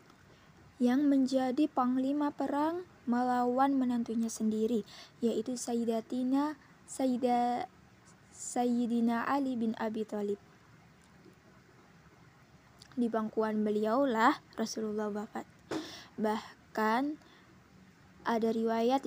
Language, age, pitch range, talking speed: Indonesian, 20-39, 220-270 Hz, 65 wpm